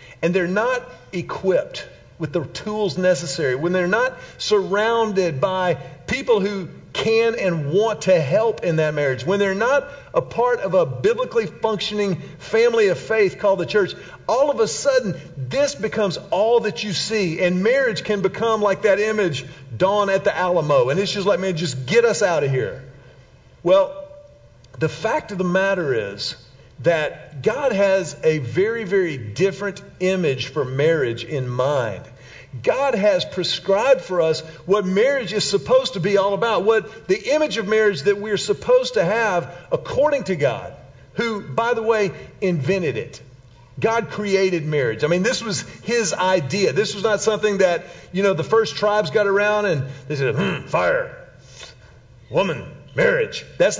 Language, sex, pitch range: English, male, 160-220 Hz